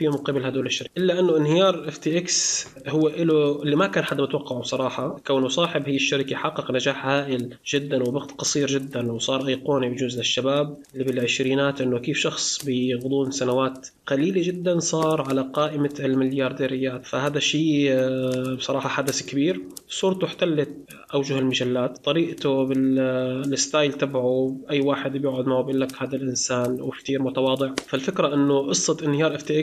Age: 20-39